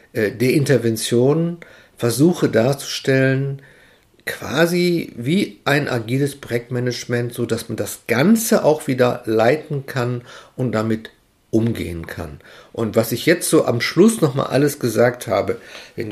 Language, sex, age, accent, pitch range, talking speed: German, male, 50-69, German, 105-140 Hz, 130 wpm